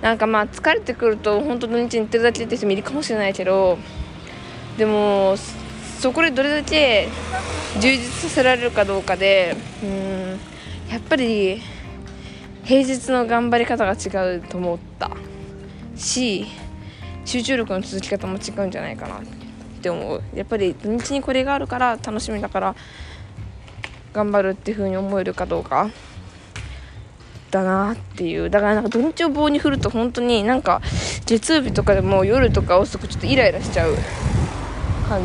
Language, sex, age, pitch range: Japanese, female, 20-39, 185-240 Hz